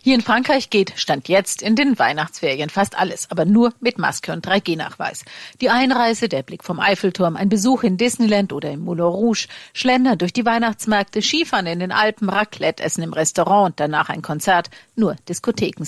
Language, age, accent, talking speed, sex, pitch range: German, 50-69, German, 185 wpm, female, 165-225 Hz